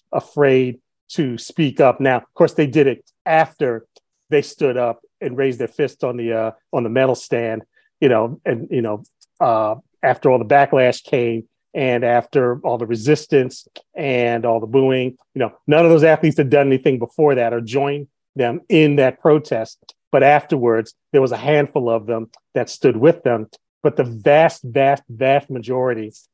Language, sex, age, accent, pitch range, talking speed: English, male, 40-59, American, 120-140 Hz, 180 wpm